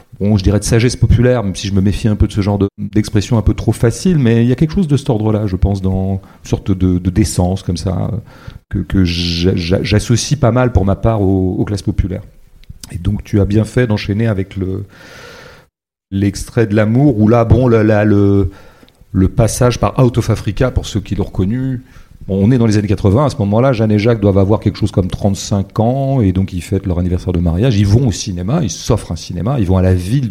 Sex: male